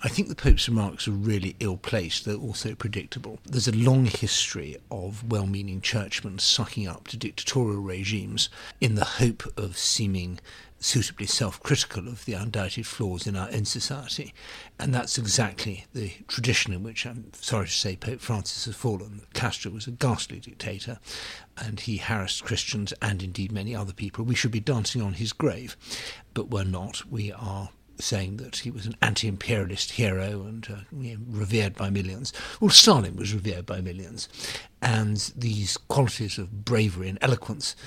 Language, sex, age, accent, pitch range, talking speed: English, male, 60-79, British, 100-120 Hz, 165 wpm